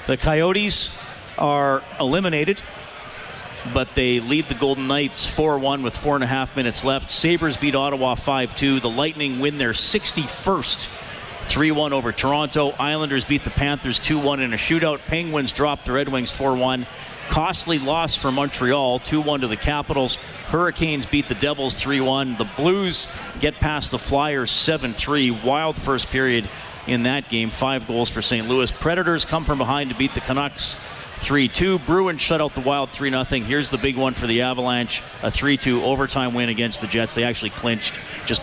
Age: 40-59